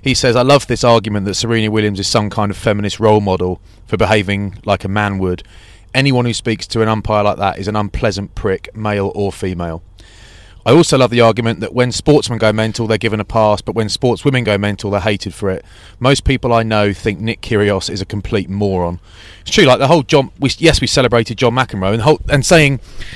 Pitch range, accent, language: 100-125 Hz, British, English